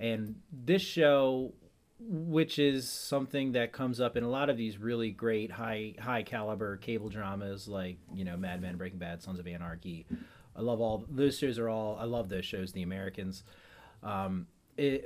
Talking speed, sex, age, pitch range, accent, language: 180 wpm, male, 30-49, 100-130 Hz, American, English